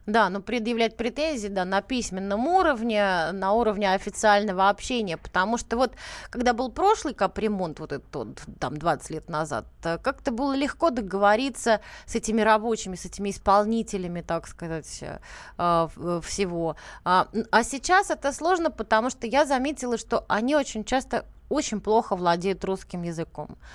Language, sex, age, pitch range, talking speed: Russian, female, 20-39, 190-245 Hz, 145 wpm